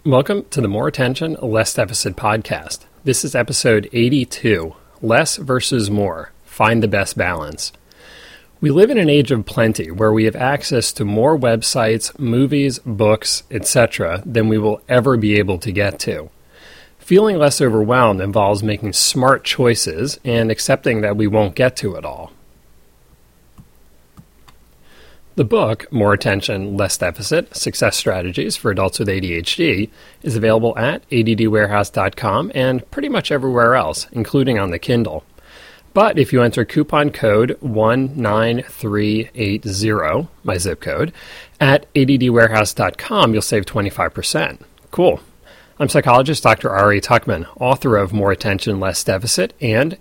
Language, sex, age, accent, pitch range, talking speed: English, male, 30-49, American, 105-130 Hz, 135 wpm